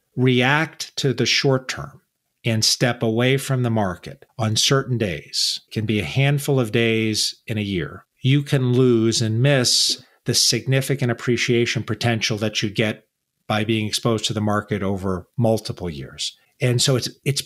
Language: English